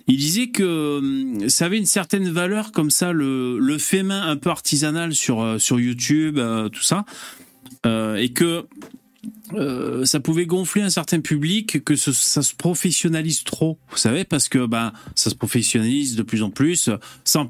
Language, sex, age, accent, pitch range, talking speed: French, male, 30-49, French, 125-175 Hz, 180 wpm